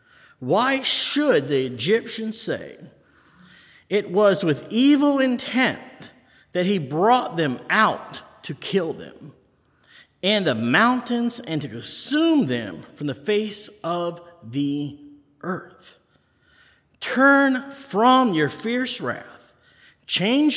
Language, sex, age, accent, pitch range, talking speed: English, male, 50-69, American, 150-240 Hz, 110 wpm